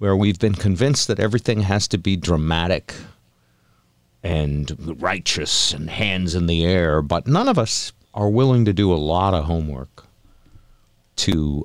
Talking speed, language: 155 wpm, English